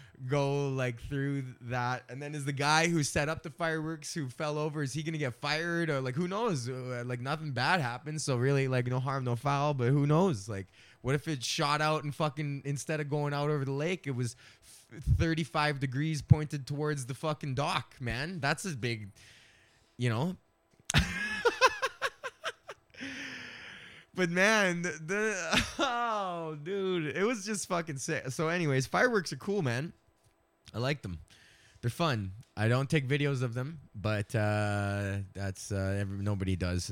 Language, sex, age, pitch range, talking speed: English, male, 20-39, 115-160 Hz, 165 wpm